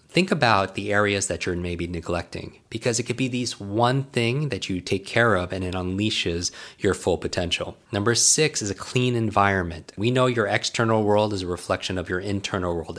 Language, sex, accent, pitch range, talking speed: English, male, American, 90-125 Hz, 205 wpm